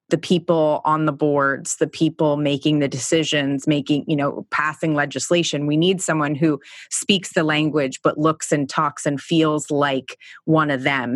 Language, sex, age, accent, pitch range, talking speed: English, female, 30-49, American, 150-175 Hz, 170 wpm